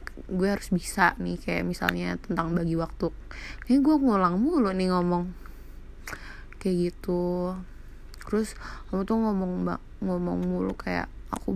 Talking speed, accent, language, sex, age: 130 wpm, native, Indonesian, female, 20-39